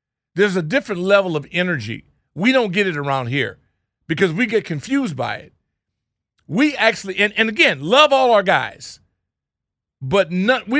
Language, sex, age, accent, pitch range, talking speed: English, male, 50-69, American, 150-240 Hz, 165 wpm